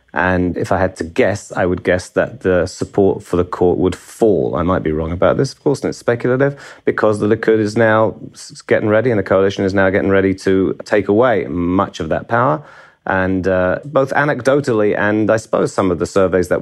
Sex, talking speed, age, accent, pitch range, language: male, 220 wpm, 30-49, British, 90-105 Hz, English